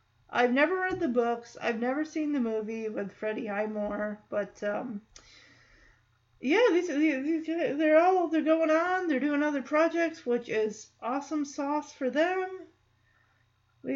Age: 40-59